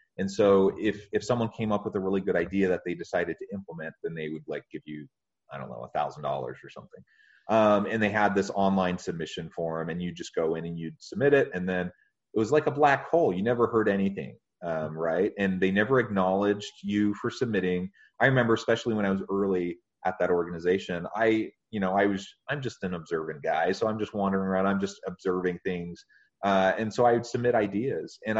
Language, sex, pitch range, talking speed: English, male, 95-120 Hz, 220 wpm